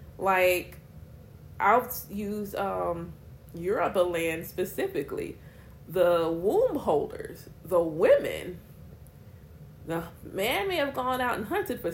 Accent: American